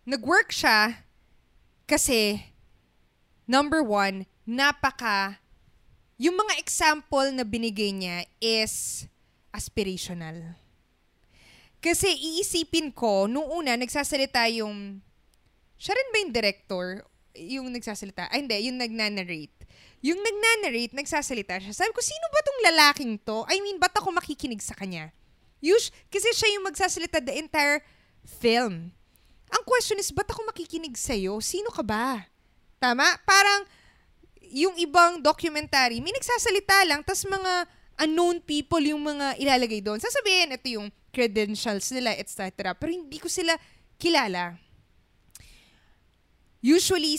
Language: Filipino